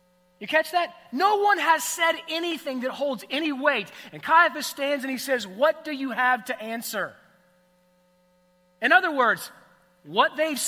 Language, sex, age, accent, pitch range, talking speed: English, male, 30-49, American, 165-230 Hz, 165 wpm